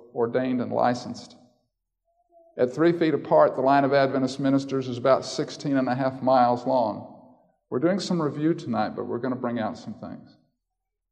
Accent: American